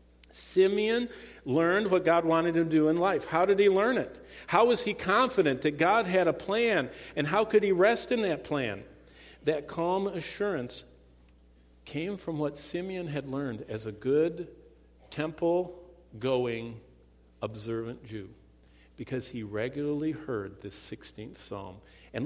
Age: 50-69